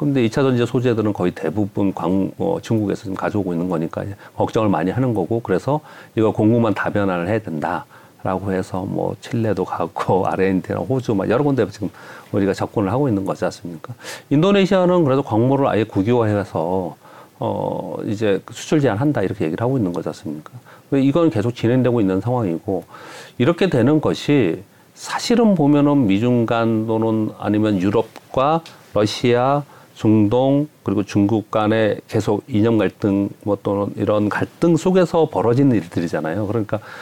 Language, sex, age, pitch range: Korean, male, 40-59, 95-130 Hz